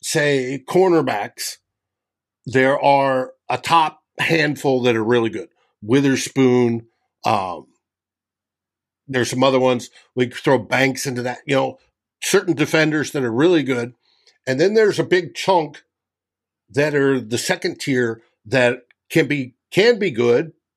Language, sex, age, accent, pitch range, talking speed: English, male, 50-69, American, 125-170 Hz, 135 wpm